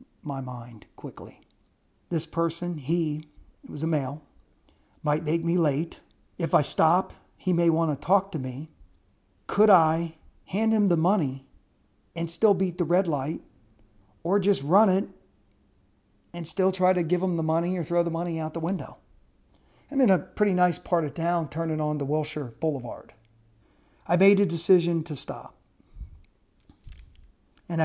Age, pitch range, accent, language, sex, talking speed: 50-69, 140-170 Hz, American, English, male, 160 wpm